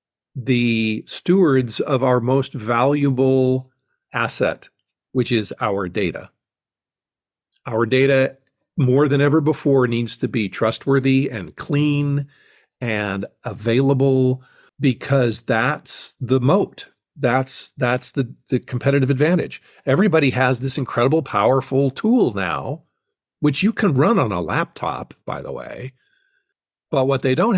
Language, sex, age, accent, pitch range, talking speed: English, male, 50-69, American, 120-150 Hz, 120 wpm